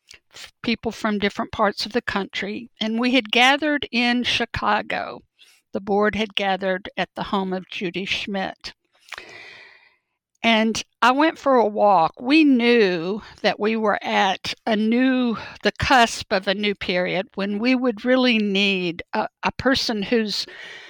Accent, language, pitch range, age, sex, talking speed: American, English, 195-255 Hz, 60-79, female, 150 wpm